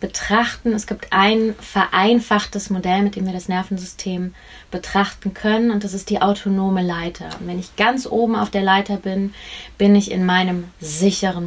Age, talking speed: 20-39, 175 wpm